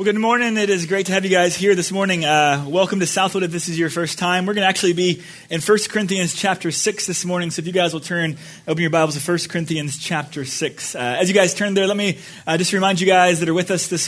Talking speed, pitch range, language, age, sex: 285 wpm, 155-185 Hz, English, 20-39, male